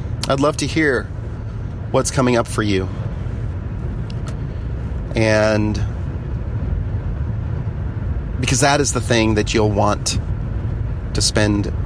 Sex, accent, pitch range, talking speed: male, American, 100-120 Hz, 100 wpm